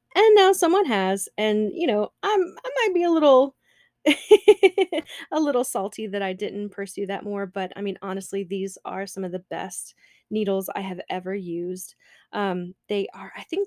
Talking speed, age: 185 wpm, 30-49